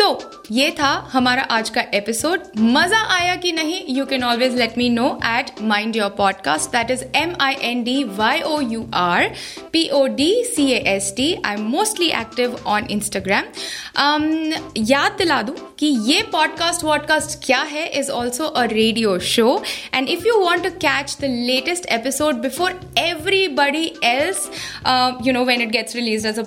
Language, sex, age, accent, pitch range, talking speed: Hindi, female, 20-39, native, 250-330 Hz, 170 wpm